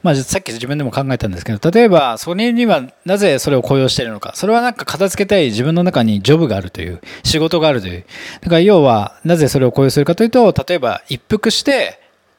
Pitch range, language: 125-190 Hz, Japanese